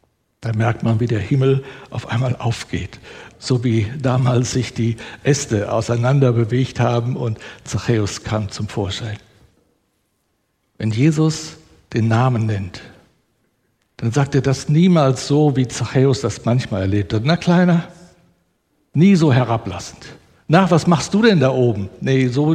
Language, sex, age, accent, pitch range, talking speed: German, male, 60-79, German, 110-135 Hz, 145 wpm